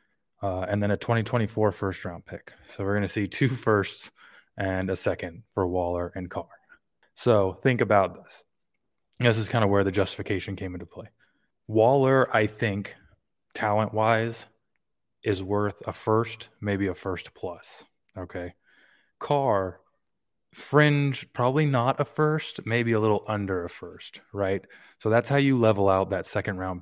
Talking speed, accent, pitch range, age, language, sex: 160 wpm, American, 95-115 Hz, 20-39, English, male